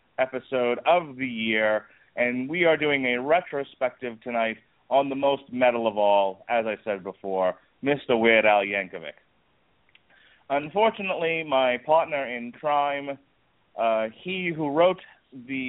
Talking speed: 135 wpm